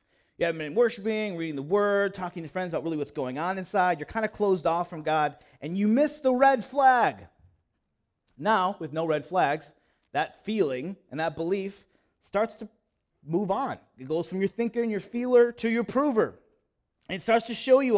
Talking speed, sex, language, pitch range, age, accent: 200 wpm, male, English, 165-240 Hz, 30-49, American